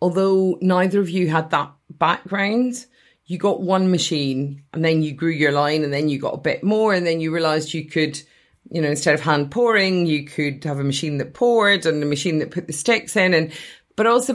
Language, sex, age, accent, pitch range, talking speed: English, female, 30-49, British, 160-200 Hz, 225 wpm